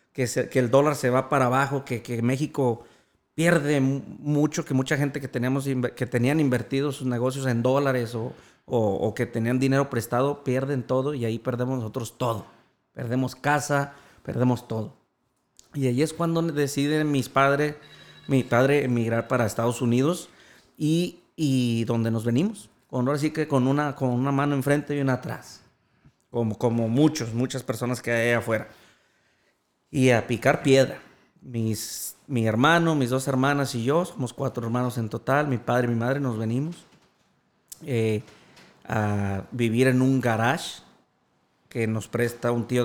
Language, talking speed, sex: Spanish, 170 wpm, male